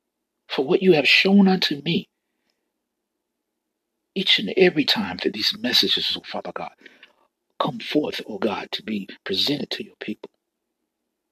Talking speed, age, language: 150 wpm, 60-79, English